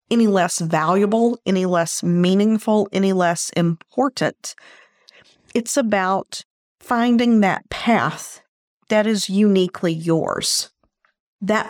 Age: 50-69